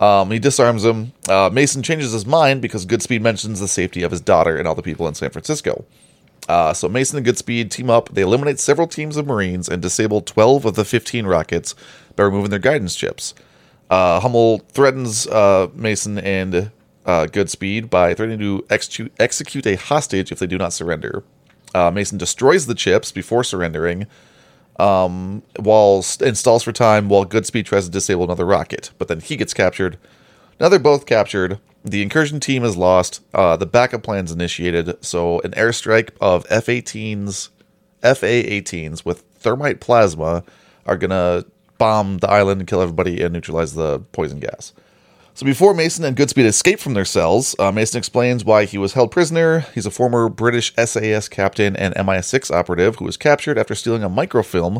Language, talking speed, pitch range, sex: English, 175 wpm, 95-125 Hz, male